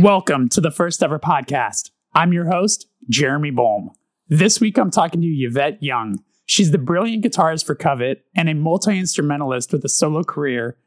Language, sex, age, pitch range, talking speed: English, male, 20-39, 140-180 Hz, 170 wpm